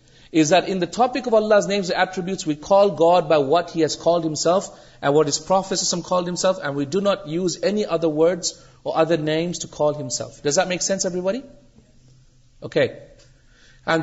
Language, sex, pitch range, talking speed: Urdu, male, 140-170 Hz, 200 wpm